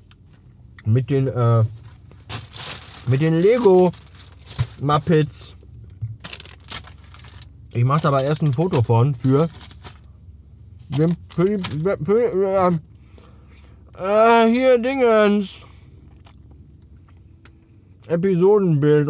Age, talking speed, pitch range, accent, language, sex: 60-79, 80 wpm, 100-155 Hz, German, German, male